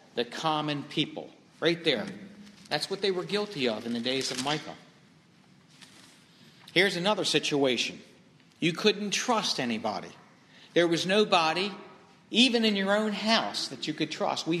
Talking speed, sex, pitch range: 150 wpm, male, 145-190 Hz